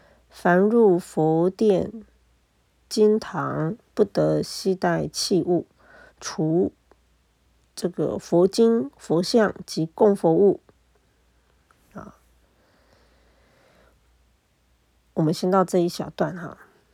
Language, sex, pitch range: Chinese, female, 145-190 Hz